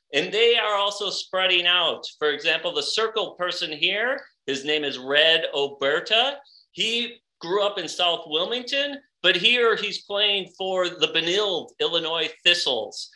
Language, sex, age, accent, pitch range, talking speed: English, male, 40-59, American, 160-230 Hz, 145 wpm